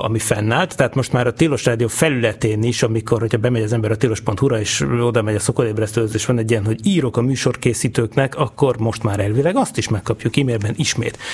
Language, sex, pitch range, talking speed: Hungarian, male, 115-135 Hz, 200 wpm